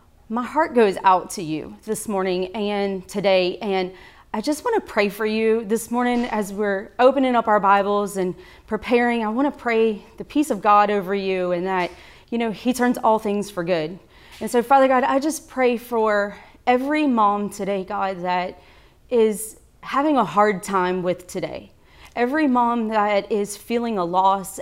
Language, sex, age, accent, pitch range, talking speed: English, female, 30-49, American, 200-245 Hz, 185 wpm